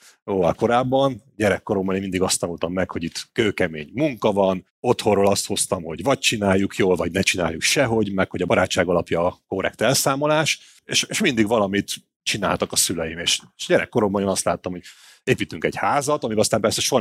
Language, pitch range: Hungarian, 90-125 Hz